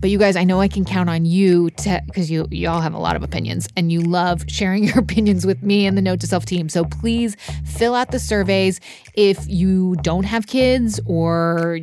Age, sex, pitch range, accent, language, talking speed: 20-39, female, 160-200 Hz, American, English, 235 wpm